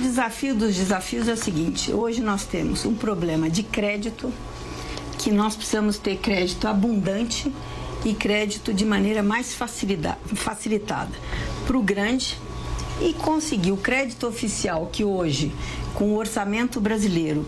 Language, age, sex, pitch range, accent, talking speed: Portuguese, 50-69, female, 195-235 Hz, Brazilian, 135 wpm